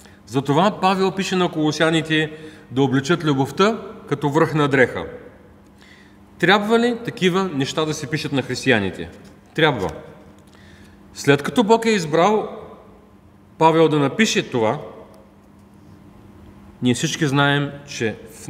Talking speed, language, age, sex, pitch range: 115 wpm, Bulgarian, 40-59, male, 115-180 Hz